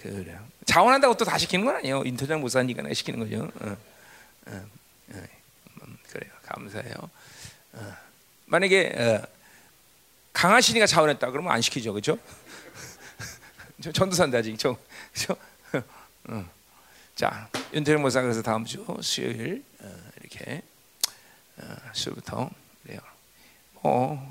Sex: male